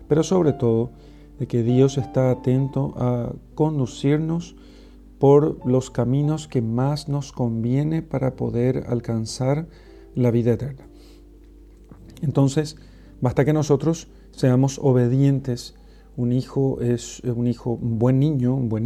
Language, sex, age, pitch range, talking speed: Spanish, male, 40-59, 120-145 Hz, 120 wpm